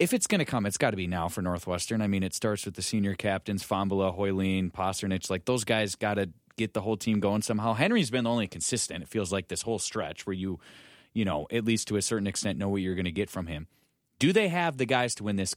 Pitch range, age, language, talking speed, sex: 100-125 Hz, 30-49, English, 275 wpm, male